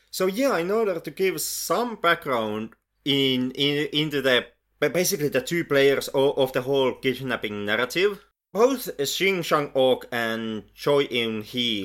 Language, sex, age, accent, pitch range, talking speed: English, male, 30-49, Finnish, 115-150 Hz, 140 wpm